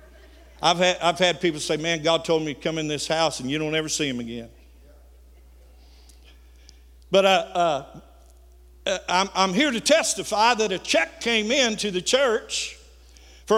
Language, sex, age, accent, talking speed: English, male, 60-79, American, 170 wpm